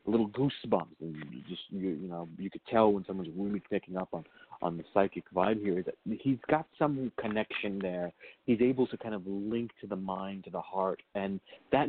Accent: American